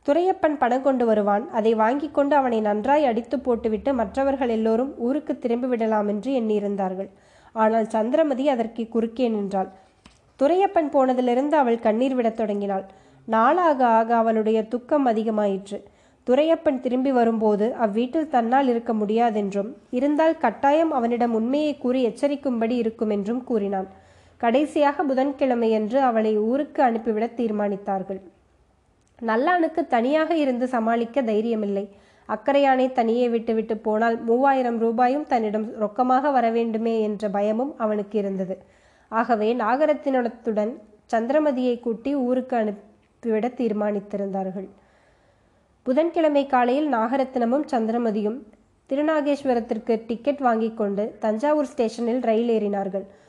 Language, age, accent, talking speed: Tamil, 20-39, native, 105 wpm